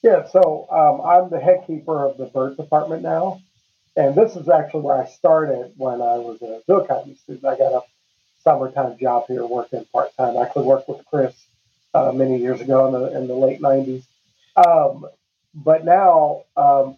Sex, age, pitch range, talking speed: male, 40-59, 135-165 Hz, 185 wpm